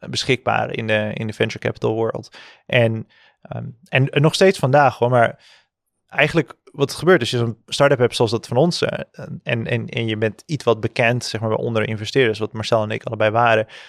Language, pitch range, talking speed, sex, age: Dutch, 110-135 Hz, 205 wpm, male, 20-39